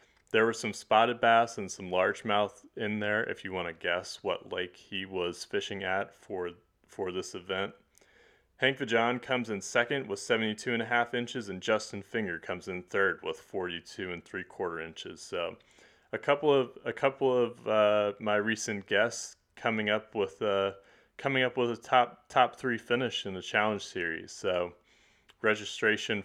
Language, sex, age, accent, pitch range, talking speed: English, male, 30-49, American, 95-115 Hz, 180 wpm